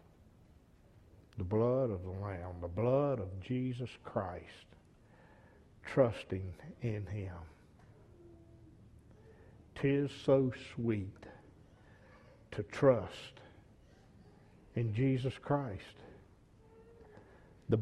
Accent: American